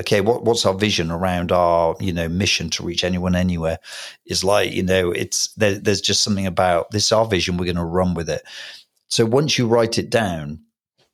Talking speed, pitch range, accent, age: 215 wpm, 90-110 Hz, British, 40-59